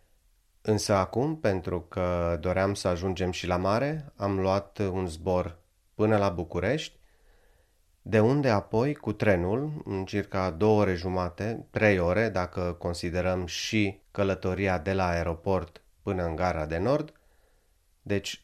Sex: male